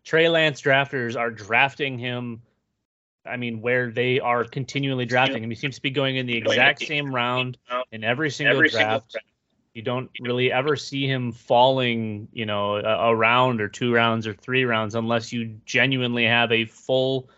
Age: 30-49